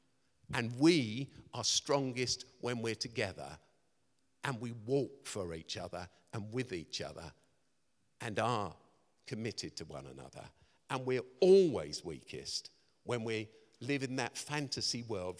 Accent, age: British, 50-69